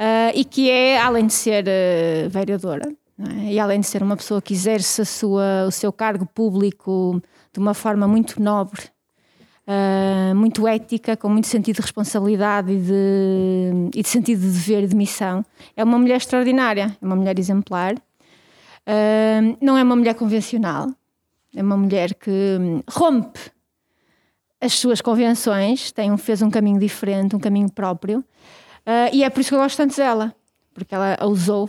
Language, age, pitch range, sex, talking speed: Portuguese, 20-39, 195-235 Hz, female, 170 wpm